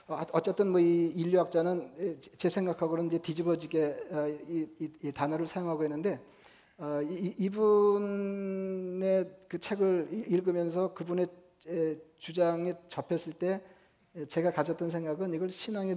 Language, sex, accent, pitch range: Korean, male, native, 150-190 Hz